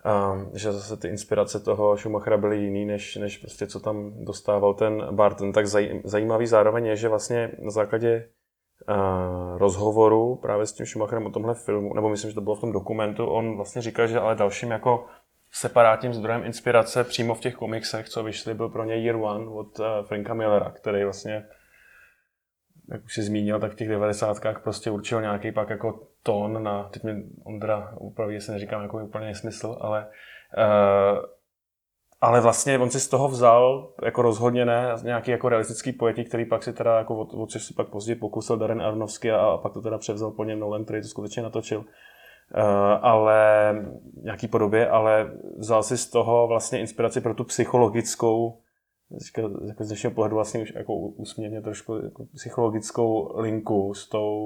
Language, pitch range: Czech, 105-115 Hz